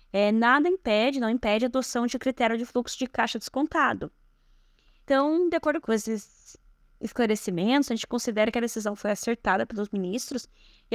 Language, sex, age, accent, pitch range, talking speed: Portuguese, female, 10-29, Brazilian, 225-270 Hz, 165 wpm